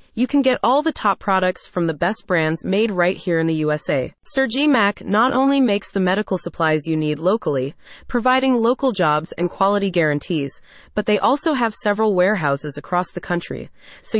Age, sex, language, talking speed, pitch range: 20-39, female, English, 190 wpm, 175-235 Hz